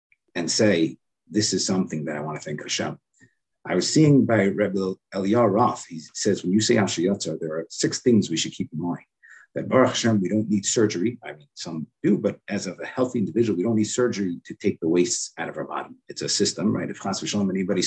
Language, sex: English, male